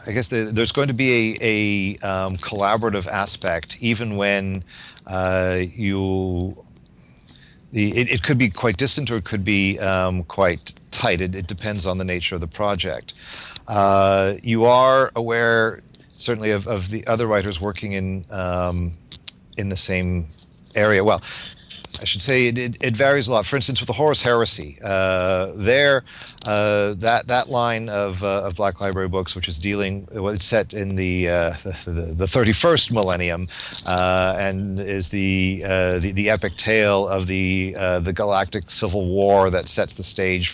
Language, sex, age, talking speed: English, male, 40-59, 175 wpm